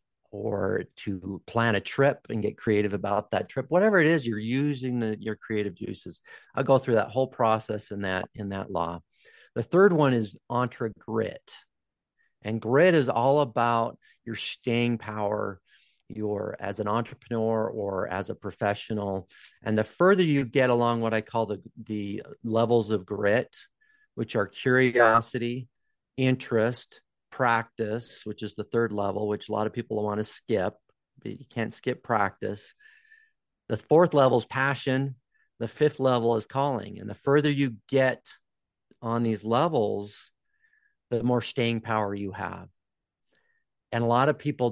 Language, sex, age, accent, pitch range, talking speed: English, male, 40-59, American, 105-130 Hz, 160 wpm